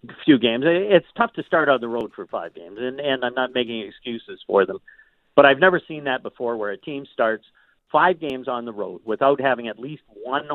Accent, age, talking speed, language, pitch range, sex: American, 50-69, 230 wpm, English, 120-150 Hz, male